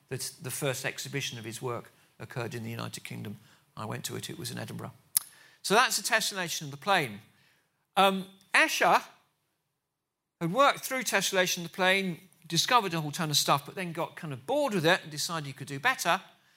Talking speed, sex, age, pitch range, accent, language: 200 wpm, male, 50-69, 135-180 Hz, British, English